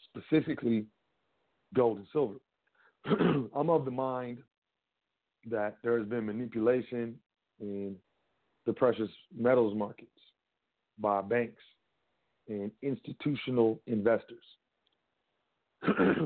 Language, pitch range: English, 110-130 Hz